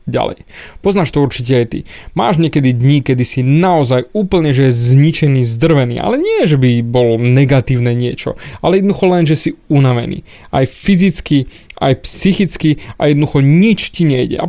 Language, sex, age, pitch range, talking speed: Slovak, male, 20-39, 130-155 Hz, 160 wpm